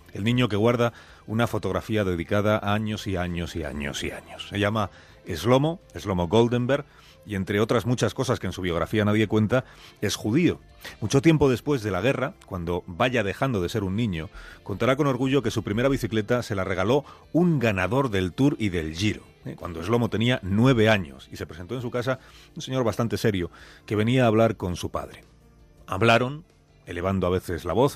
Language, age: Spanish, 40-59